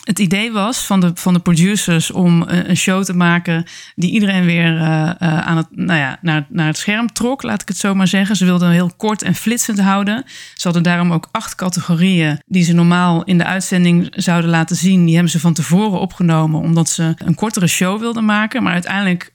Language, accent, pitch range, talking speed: Dutch, Dutch, 165-200 Hz, 215 wpm